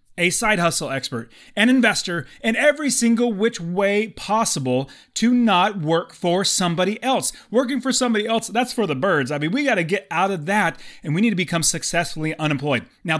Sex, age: male, 30-49